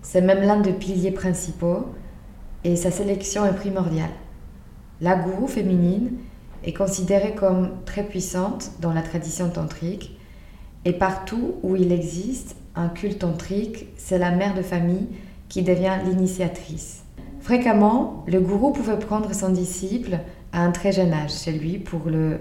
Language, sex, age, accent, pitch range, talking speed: French, female, 20-39, French, 165-190 Hz, 145 wpm